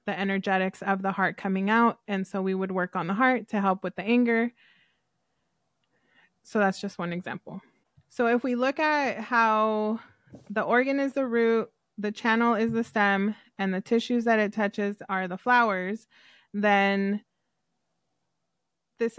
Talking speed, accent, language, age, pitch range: 165 wpm, American, English, 20-39, 195-225 Hz